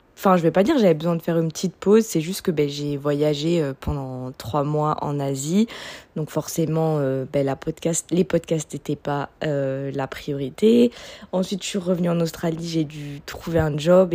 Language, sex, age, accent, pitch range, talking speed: French, female, 20-39, French, 155-185 Hz, 205 wpm